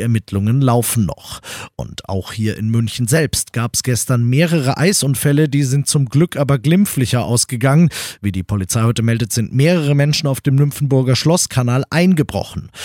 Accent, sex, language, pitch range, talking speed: German, male, German, 120-150 Hz, 160 wpm